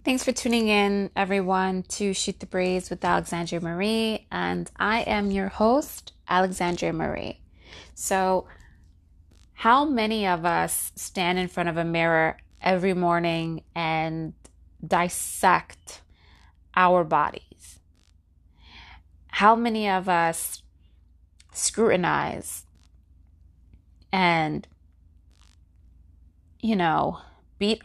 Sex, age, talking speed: female, 20-39, 95 wpm